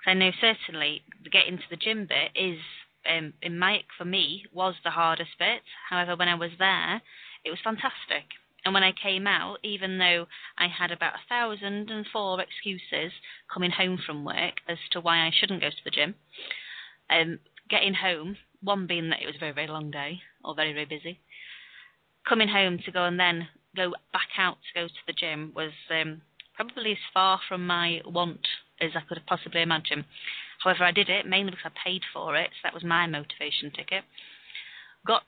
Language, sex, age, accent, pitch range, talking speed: English, female, 30-49, British, 165-190 Hz, 195 wpm